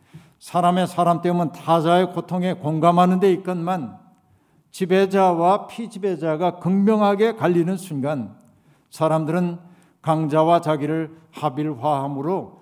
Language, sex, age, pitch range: Korean, male, 60-79, 155-185 Hz